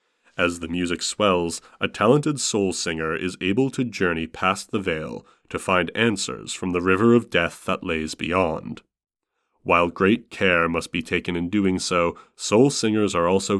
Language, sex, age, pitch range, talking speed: English, male, 30-49, 85-105 Hz, 170 wpm